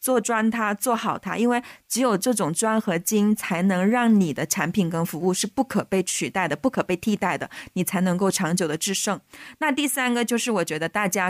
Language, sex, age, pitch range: Chinese, female, 20-39, 180-225 Hz